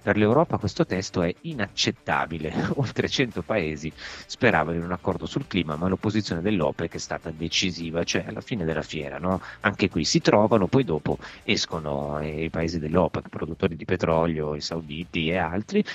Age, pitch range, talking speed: 30-49, 75-95 Hz, 160 wpm